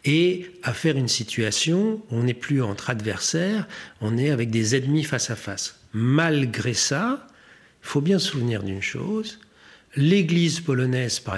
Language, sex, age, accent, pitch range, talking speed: French, male, 50-69, French, 115-160 Hz, 165 wpm